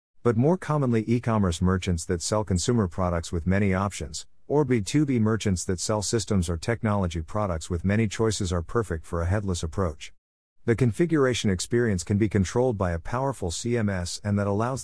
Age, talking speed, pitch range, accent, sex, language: 50-69, 175 wpm, 90-115 Hz, American, male, English